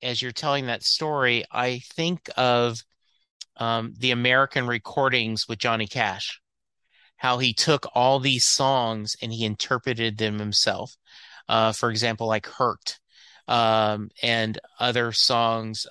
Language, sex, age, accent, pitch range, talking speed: English, male, 30-49, American, 110-130 Hz, 130 wpm